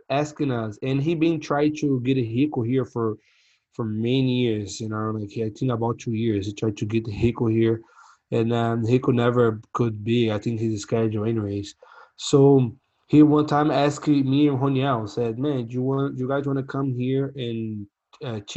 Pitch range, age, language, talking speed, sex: 120-145 Hz, 20-39, English, 205 wpm, male